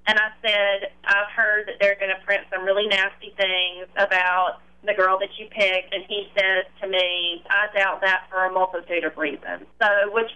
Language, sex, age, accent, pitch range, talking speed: English, female, 20-39, American, 185-215 Hz, 205 wpm